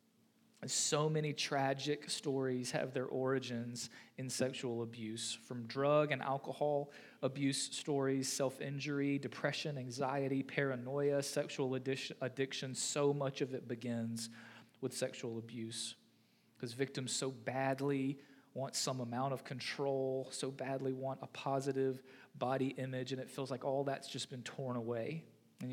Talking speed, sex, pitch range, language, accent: 135 wpm, male, 115-135 Hz, English, American